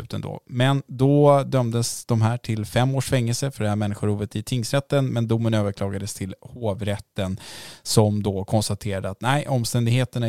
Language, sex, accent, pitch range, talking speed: Swedish, male, Norwegian, 105-125 Hz, 155 wpm